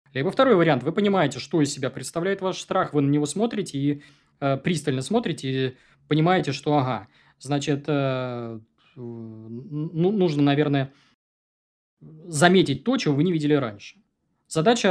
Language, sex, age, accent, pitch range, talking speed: Russian, male, 20-39, native, 130-170 Hz, 150 wpm